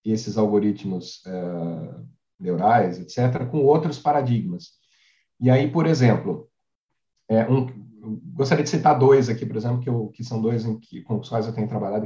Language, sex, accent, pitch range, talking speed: Portuguese, male, Brazilian, 115-145 Hz, 170 wpm